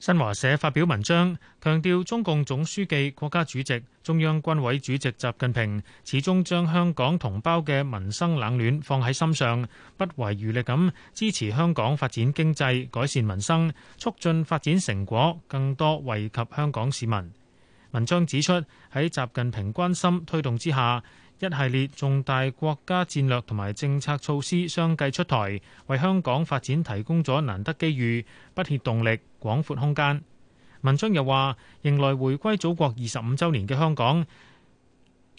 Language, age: Chinese, 30-49